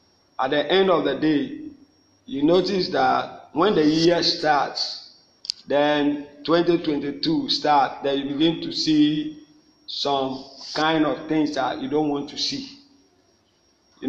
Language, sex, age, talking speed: English, male, 50-69, 135 wpm